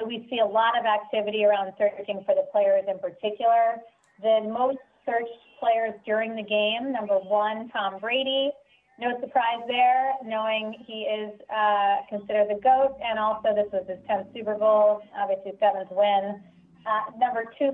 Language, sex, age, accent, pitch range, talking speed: English, female, 30-49, American, 210-250 Hz, 160 wpm